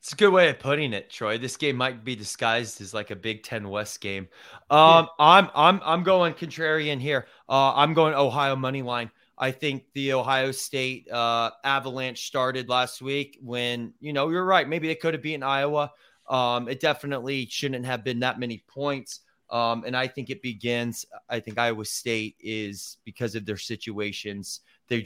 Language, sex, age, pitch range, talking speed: English, male, 20-39, 115-140 Hz, 185 wpm